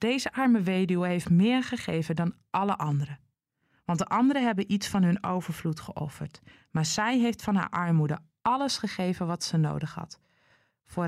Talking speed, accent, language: 170 wpm, Dutch, Dutch